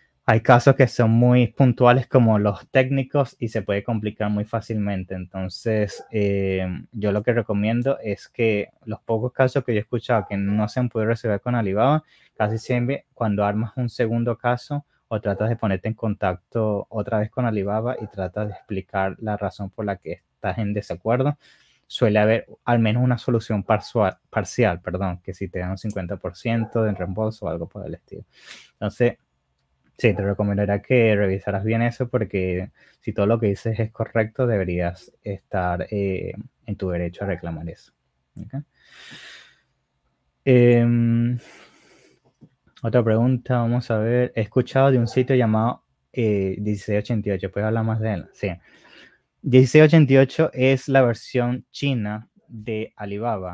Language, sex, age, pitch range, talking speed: English, male, 20-39, 100-120 Hz, 160 wpm